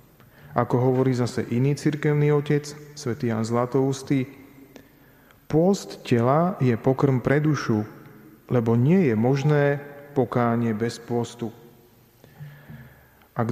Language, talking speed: Slovak, 100 wpm